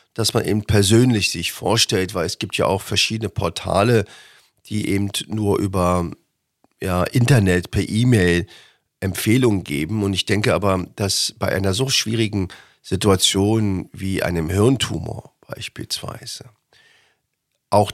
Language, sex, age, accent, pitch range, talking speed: German, male, 40-59, German, 95-115 Hz, 125 wpm